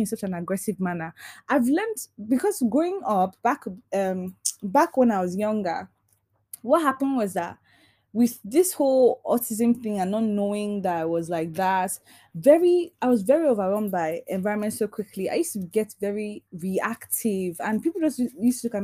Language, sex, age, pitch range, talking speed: English, female, 20-39, 185-250 Hz, 180 wpm